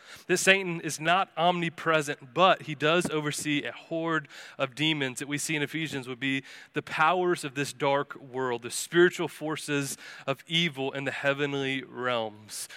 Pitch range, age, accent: 140-175 Hz, 30-49, American